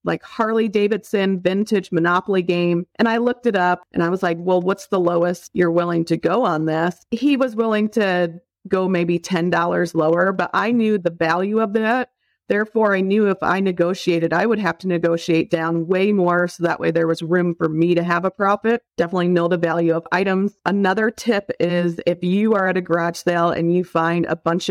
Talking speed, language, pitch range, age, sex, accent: 210 wpm, English, 170-200 Hz, 40-59, female, American